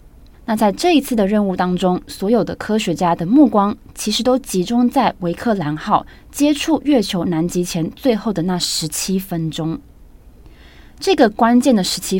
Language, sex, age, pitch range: Chinese, female, 20-39, 175-230 Hz